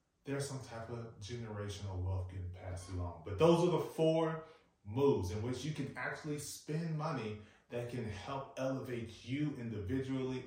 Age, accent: 30-49, American